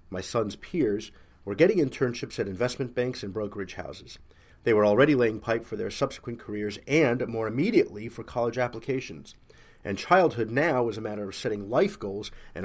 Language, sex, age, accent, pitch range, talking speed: English, male, 40-59, American, 100-130 Hz, 180 wpm